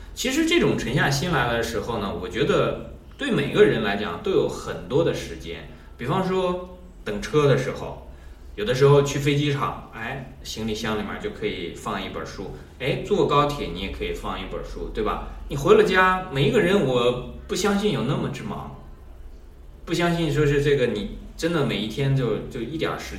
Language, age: Chinese, 20-39